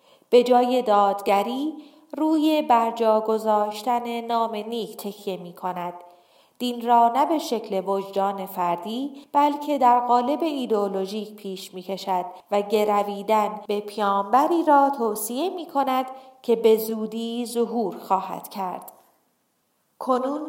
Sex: female